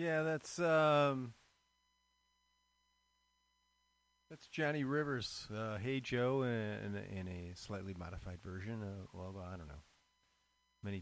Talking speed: 120 wpm